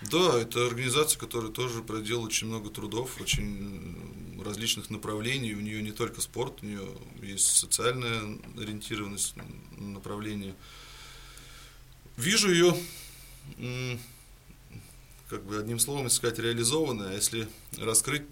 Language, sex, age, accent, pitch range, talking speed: Russian, male, 20-39, native, 105-115 Hz, 110 wpm